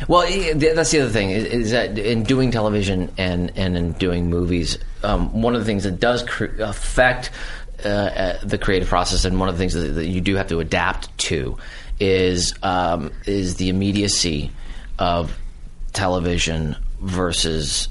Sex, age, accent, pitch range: male, 30-49, American, 85-105 Hz